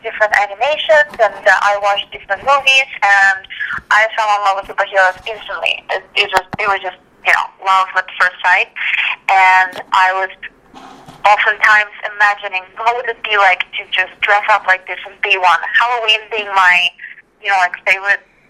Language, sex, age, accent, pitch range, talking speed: English, female, 20-39, American, 190-225 Hz, 175 wpm